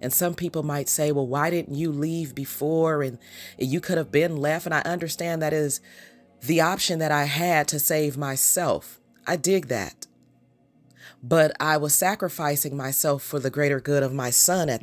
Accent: American